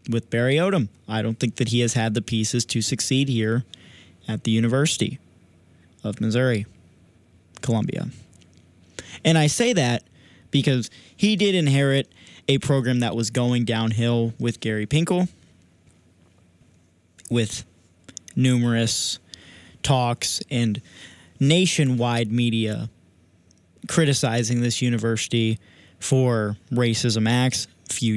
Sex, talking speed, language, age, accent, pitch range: male, 110 wpm, English, 20-39, American, 105-130 Hz